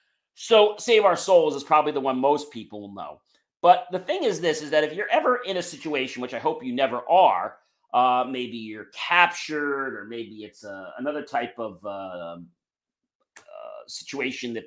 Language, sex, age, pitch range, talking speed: English, male, 40-59, 120-185 Hz, 190 wpm